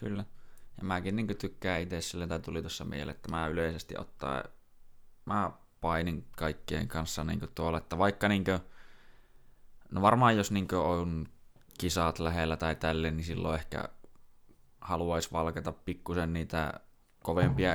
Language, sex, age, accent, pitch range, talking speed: Finnish, male, 20-39, native, 80-95 Hz, 150 wpm